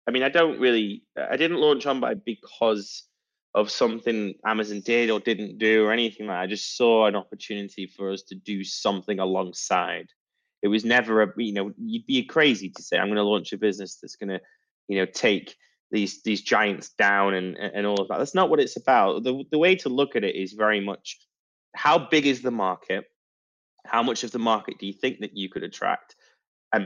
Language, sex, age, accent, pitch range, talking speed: English, male, 20-39, British, 100-125 Hz, 220 wpm